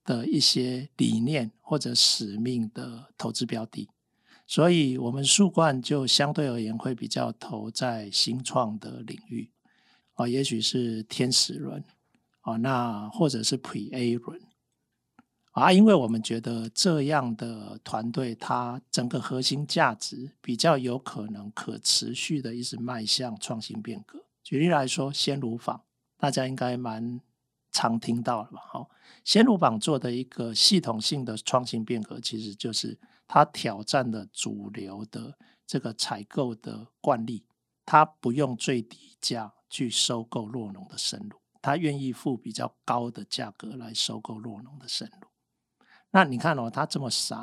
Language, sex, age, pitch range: Chinese, male, 50-69, 115-145 Hz